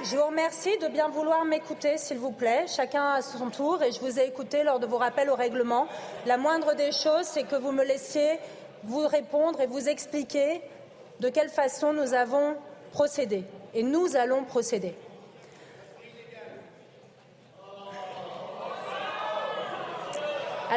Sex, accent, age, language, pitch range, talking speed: female, French, 30-49, French, 245-295 Hz, 145 wpm